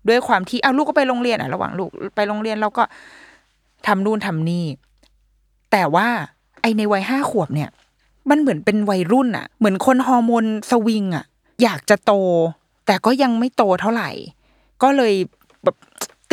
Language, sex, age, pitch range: Thai, female, 20-39, 160-230 Hz